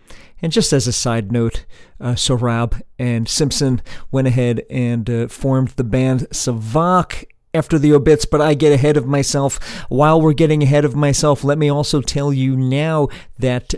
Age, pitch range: 40-59, 120-150 Hz